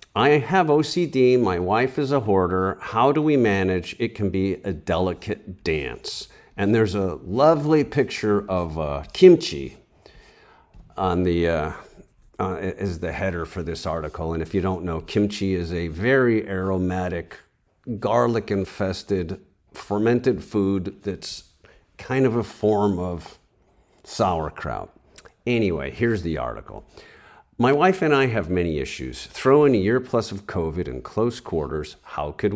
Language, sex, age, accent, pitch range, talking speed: English, male, 50-69, American, 90-130 Hz, 145 wpm